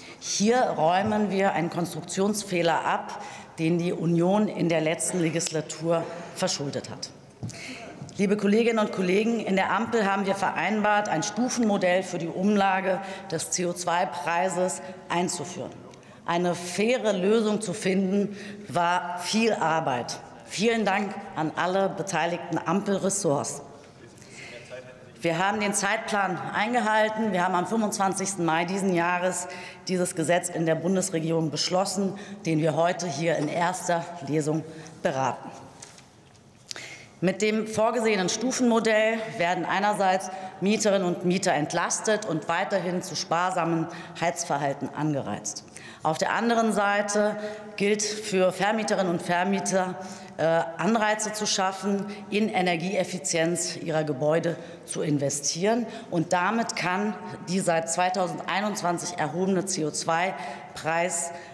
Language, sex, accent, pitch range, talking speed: German, female, German, 165-200 Hz, 110 wpm